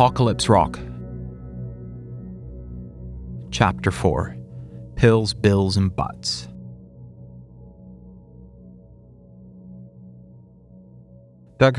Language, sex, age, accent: English, male, 30-49, American